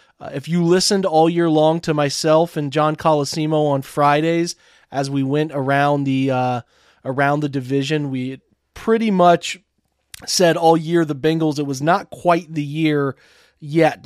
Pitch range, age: 145-175 Hz, 30-49